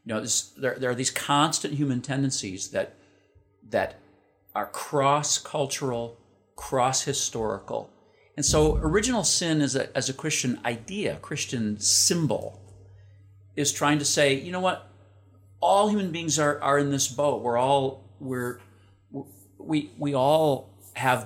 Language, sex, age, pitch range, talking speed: English, male, 50-69, 100-140 Hz, 145 wpm